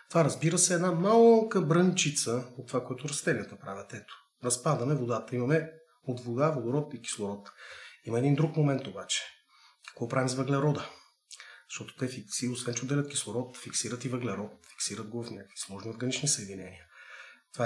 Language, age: Bulgarian, 30-49